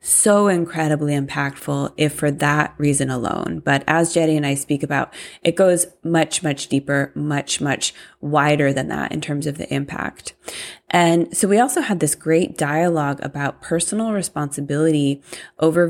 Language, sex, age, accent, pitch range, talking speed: English, female, 20-39, American, 145-170 Hz, 160 wpm